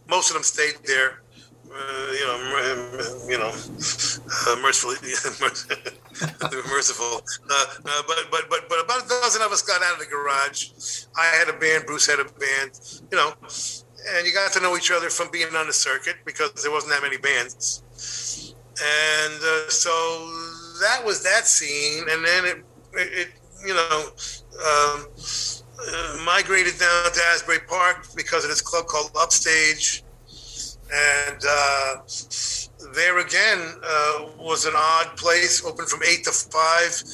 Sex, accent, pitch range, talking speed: male, American, 135-165 Hz, 165 wpm